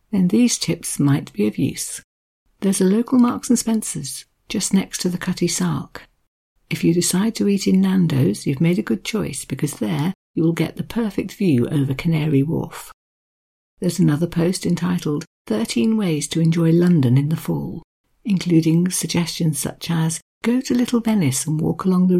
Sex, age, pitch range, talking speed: female, 60-79, 150-190 Hz, 180 wpm